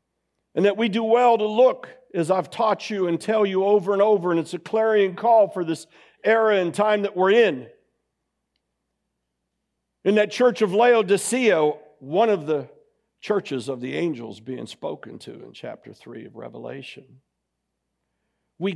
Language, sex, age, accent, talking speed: English, male, 60-79, American, 165 wpm